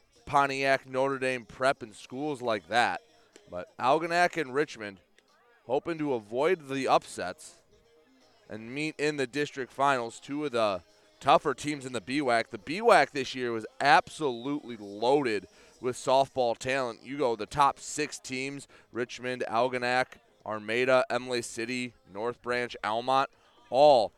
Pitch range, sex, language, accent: 120-155 Hz, male, English, American